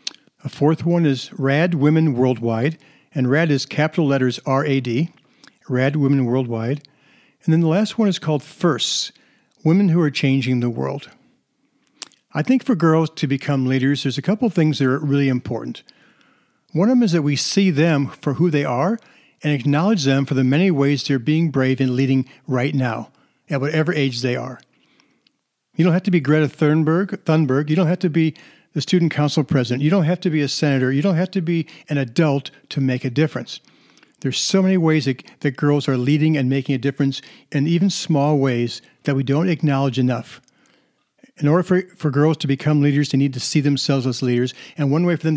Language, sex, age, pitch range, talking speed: English, male, 50-69, 135-165 Hz, 205 wpm